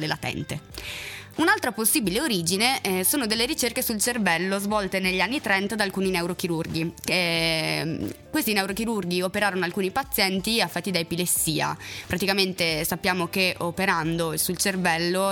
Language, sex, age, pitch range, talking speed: Italian, female, 20-39, 175-215 Hz, 120 wpm